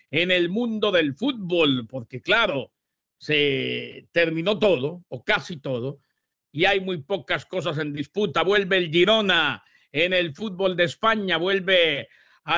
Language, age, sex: English, 50-69, male